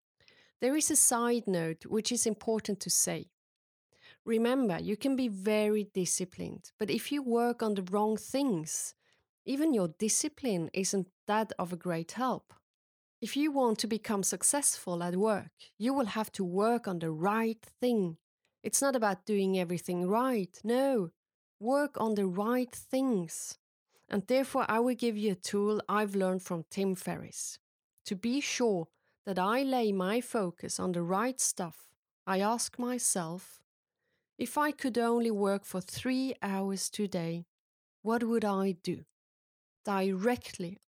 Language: English